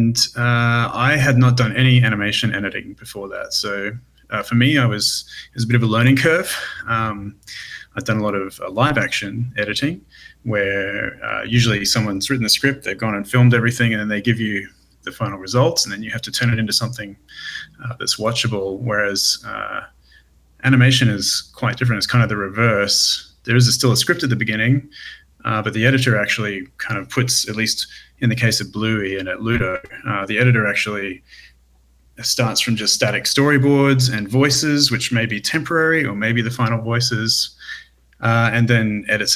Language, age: English, 30-49